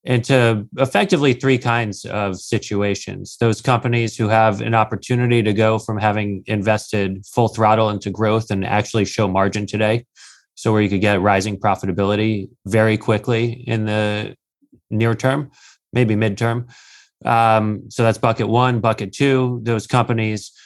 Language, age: English, 30-49